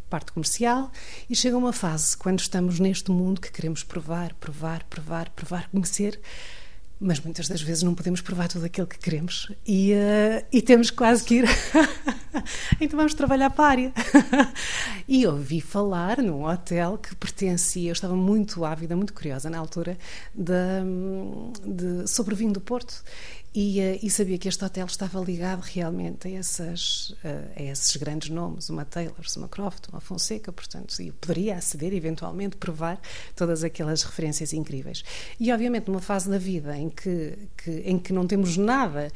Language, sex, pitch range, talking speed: Portuguese, female, 165-205 Hz, 160 wpm